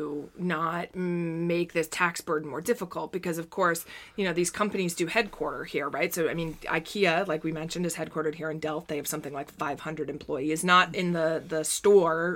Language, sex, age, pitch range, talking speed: English, female, 20-39, 160-185 Hz, 205 wpm